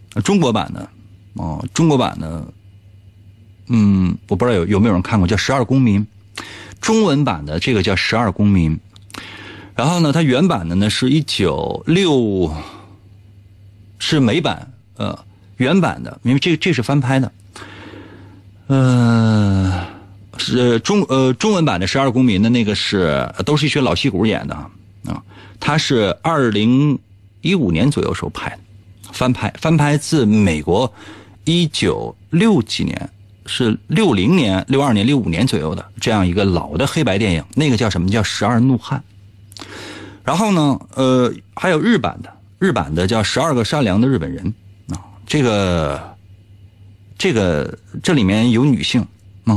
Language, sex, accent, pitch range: Chinese, male, native, 100-125 Hz